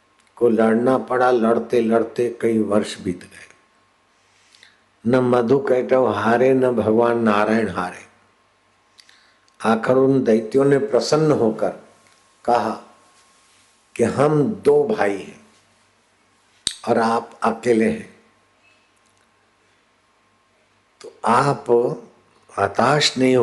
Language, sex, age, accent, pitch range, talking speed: Hindi, male, 60-79, native, 115-130 Hz, 90 wpm